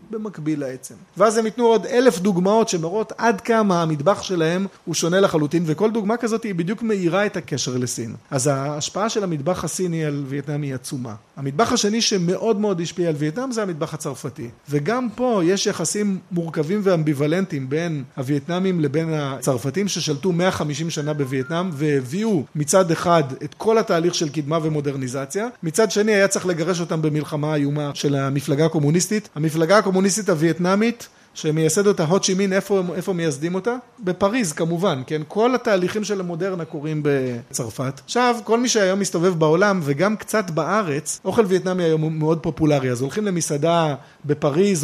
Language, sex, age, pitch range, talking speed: Hebrew, male, 30-49, 150-200 Hz, 145 wpm